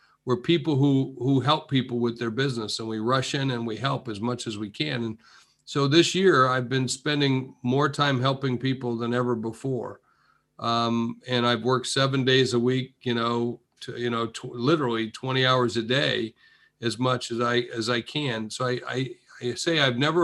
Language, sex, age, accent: English, male, 50-69, American